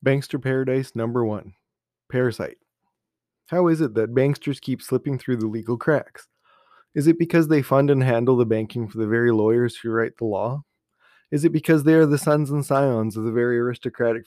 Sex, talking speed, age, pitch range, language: male, 195 wpm, 20-39, 120-150 Hz, English